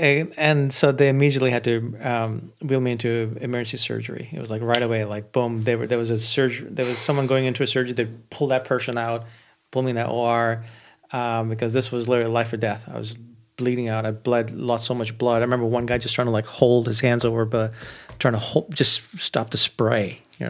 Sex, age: male, 40-59